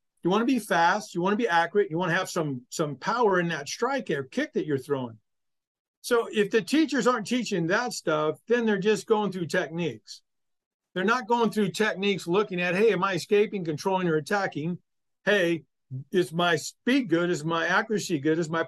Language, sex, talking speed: English, male, 205 wpm